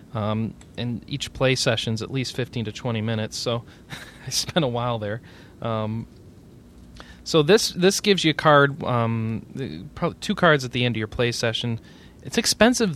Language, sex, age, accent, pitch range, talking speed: English, male, 30-49, American, 115-155 Hz, 180 wpm